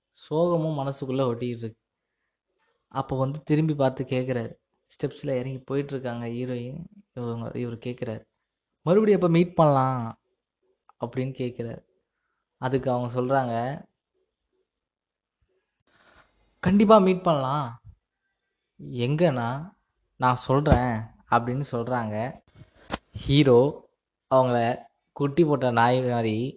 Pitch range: 125-155 Hz